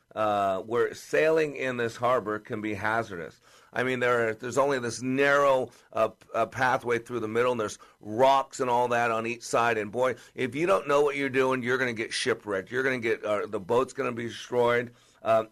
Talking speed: 225 wpm